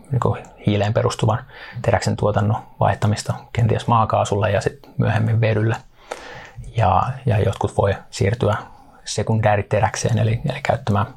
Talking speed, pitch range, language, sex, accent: 105 wpm, 100-120 Hz, Finnish, male, native